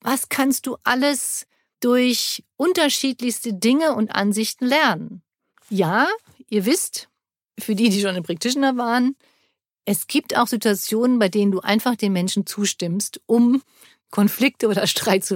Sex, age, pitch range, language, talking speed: female, 50-69, 195-255 Hz, German, 140 wpm